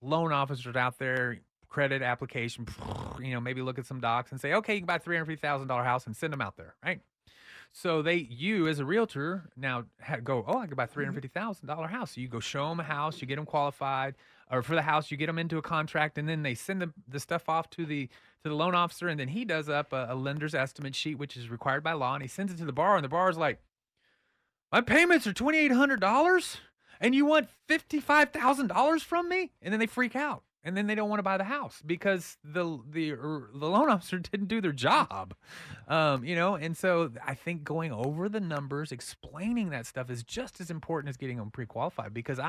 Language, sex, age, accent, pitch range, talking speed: English, male, 30-49, American, 130-185 Hz, 245 wpm